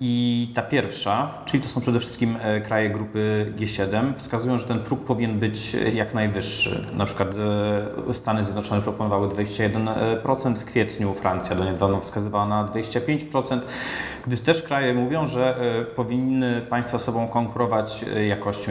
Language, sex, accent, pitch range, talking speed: Polish, male, native, 105-120 Hz, 140 wpm